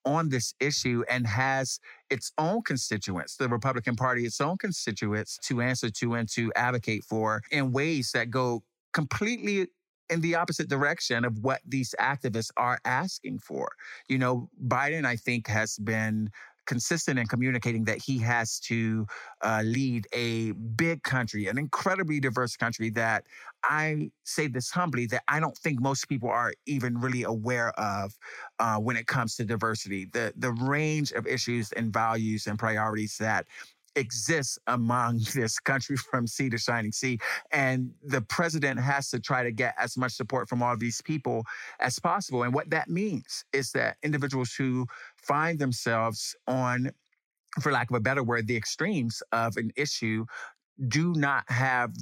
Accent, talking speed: American, 165 wpm